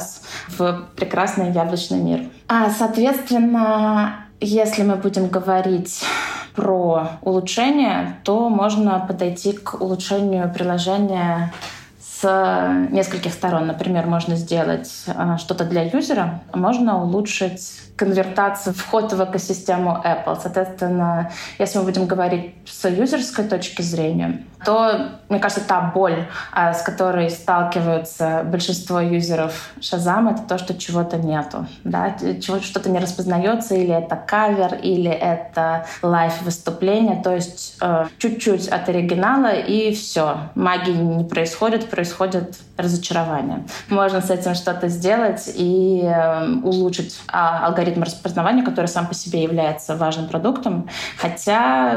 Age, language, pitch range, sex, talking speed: 20-39, Russian, 170-200 Hz, female, 120 wpm